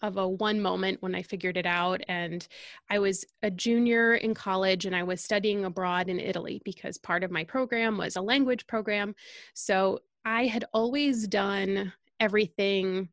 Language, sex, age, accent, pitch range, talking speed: English, female, 20-39, American, 185-220 Hz, 175 wpm